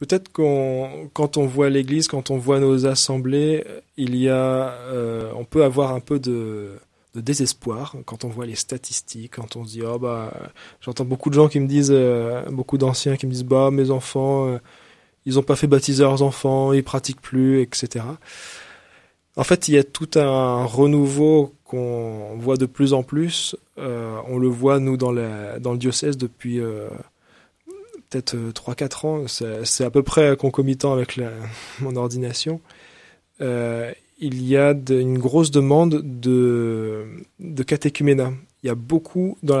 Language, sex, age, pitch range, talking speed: French, male, 20-39, 125-145 Hz, 175 wpm